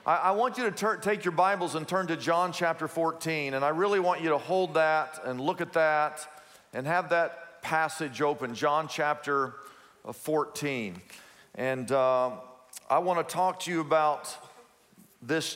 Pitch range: 145-180 Hz